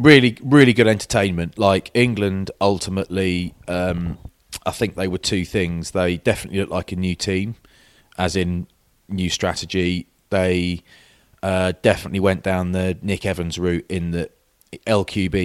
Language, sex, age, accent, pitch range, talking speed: English, male, 30-49, British, 90-100 Hz, 145 wpm